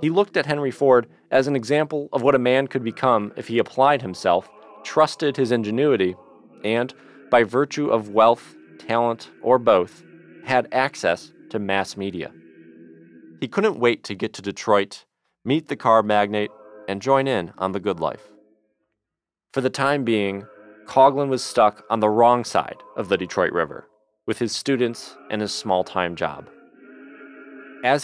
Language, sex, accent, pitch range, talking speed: English, male, American, 105-145 Hz, 160 wpm